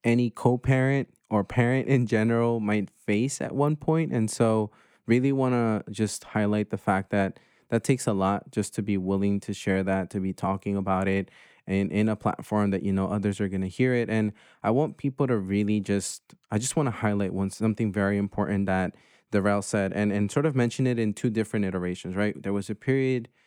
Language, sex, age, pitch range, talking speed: English, male, 20-39, 100-120 Hz, 215 wpm